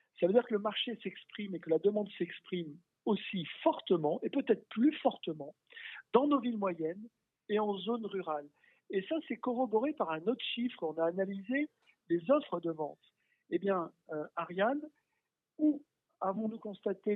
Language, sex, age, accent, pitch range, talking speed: French, male, 50-69, French, 170-225 Hz, 170 wpm